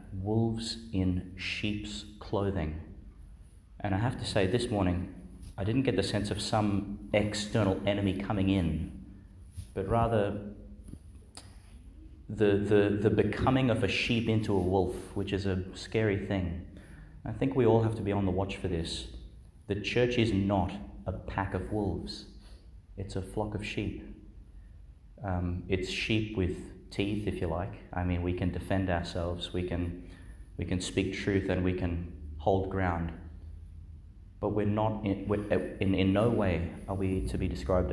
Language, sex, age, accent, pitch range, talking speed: English, male, 30-49, Australian, 90-100 Hz, 165 wpm